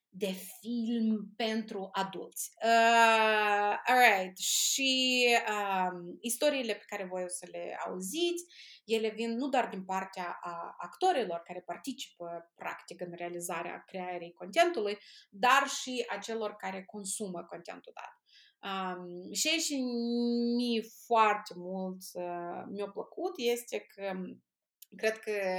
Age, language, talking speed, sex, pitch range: 20-39, Romanian, 125 wpm, female, 185-235 Hz